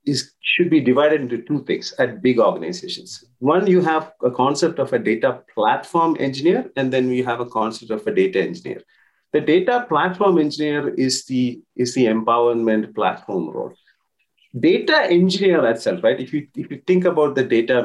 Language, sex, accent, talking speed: English, male, Indian, 180 wpm